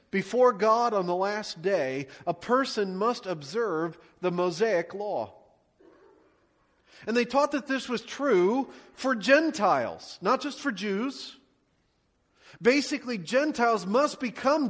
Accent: American